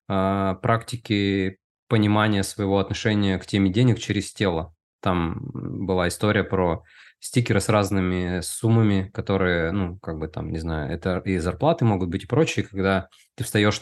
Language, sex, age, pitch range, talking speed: Russian, male, 20-39, 95-110 Hz, 150 wpm